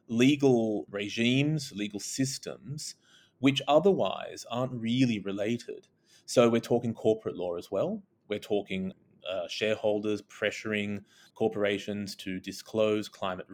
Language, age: English, 30-49